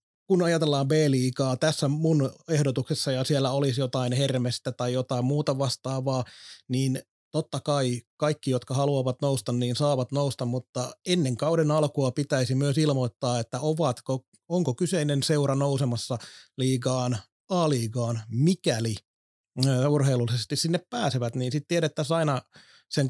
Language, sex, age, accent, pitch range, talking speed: Finnish, male, 30-49, native, 125-150 Hz, 125 wpm